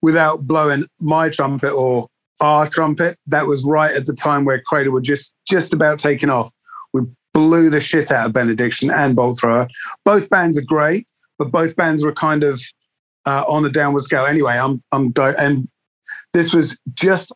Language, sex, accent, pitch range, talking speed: English, male, British, 130-160 Hz, 185 wpm